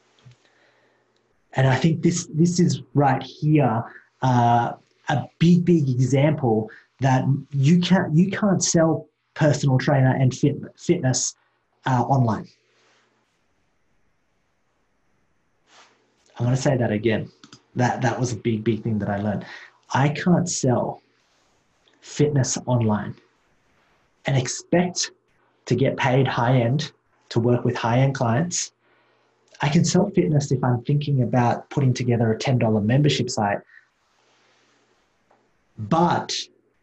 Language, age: English, 30-49